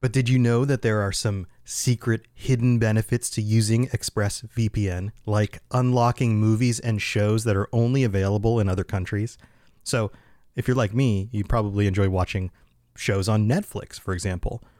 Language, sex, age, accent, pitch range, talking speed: English, male, 30-49, American, 105-130 Hz, 160 wpm